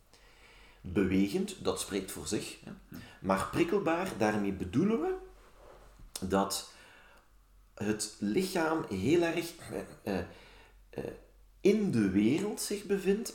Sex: male